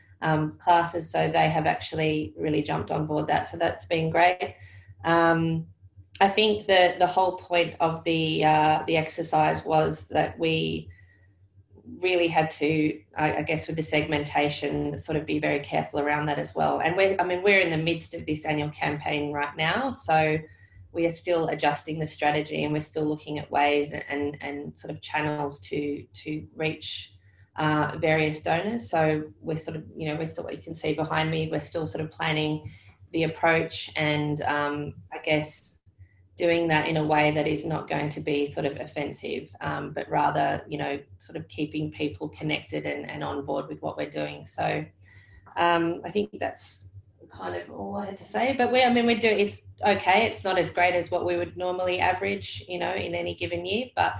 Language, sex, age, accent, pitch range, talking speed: English, female, 20-39, Australian, 105-165 Hz, 200 wpm